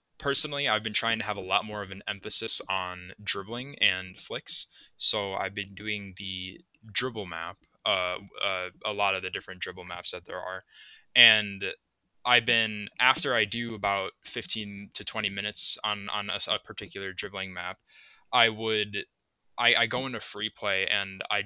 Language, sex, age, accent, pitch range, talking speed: English, male, 10-29, American, 100-115 Hz, 175 wpm